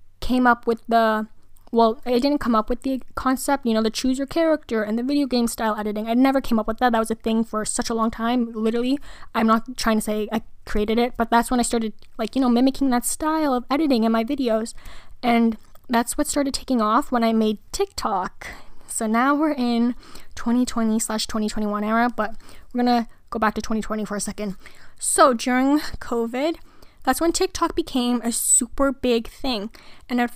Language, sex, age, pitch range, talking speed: English, female, 10-29, 225-260 Hz, 205 wpm